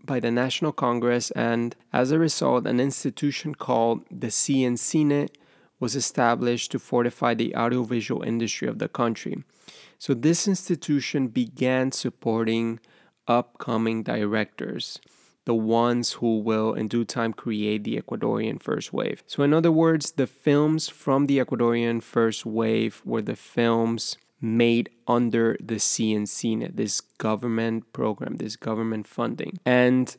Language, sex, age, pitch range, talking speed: English, male, 30-49, 115-130 Hz, 135 wpm